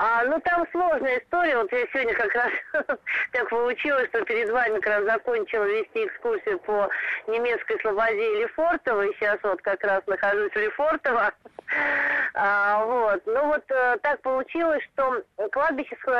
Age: 30-49